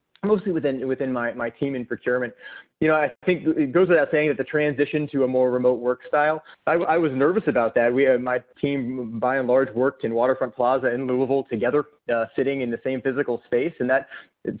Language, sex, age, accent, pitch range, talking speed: English, male, 30-49, American, 125-150 Hz, 220 wpm